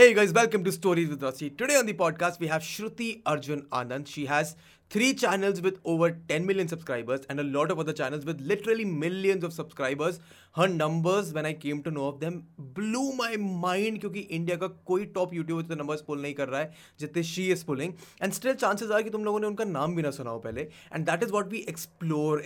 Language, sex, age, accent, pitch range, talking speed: Hindi, male, 20-39, native, 145-195 Hz, 230 wpm